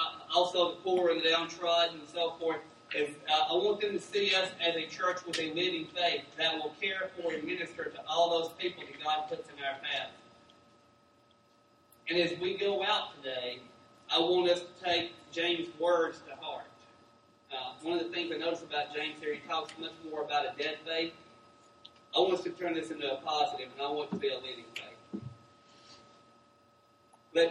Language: English